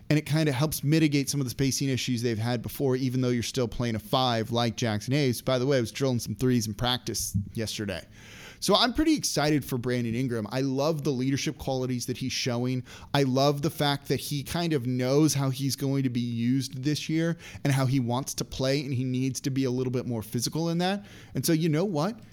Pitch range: 120-150 Hz